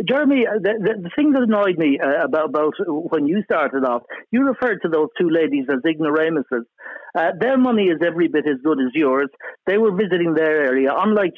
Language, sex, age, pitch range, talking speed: English, male, 60-79, 150-200 Hz, 200 wpm